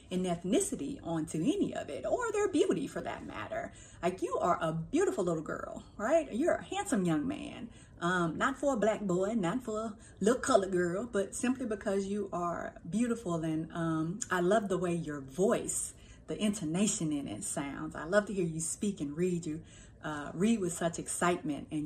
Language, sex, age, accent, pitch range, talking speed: English, female, 30-49, American, 160-210 Hz, 195 wpm